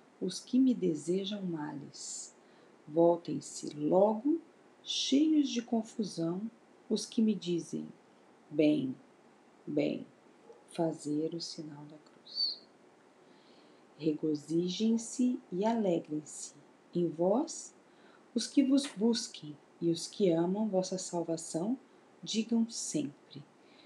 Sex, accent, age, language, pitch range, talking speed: female, Brazilian, 40-59, Portuguese, 165-225 Hz, 95 wpm